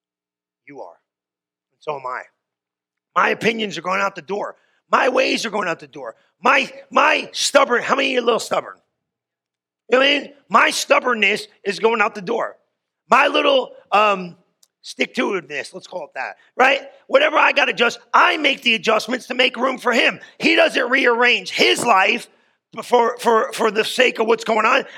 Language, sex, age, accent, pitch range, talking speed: English, male, 40-59, American, 175-235 Hz, 195 wpm